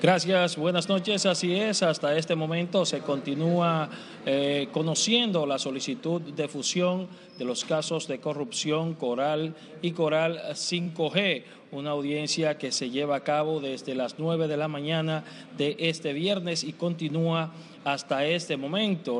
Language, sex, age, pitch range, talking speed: Spanish, male, 40-59, 150-180 Hz, 145 wpm